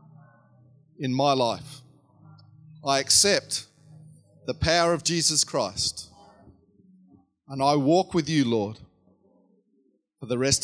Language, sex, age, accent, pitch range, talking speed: English, male, 40-59, Australian, 115-155 Hz, 105 wpm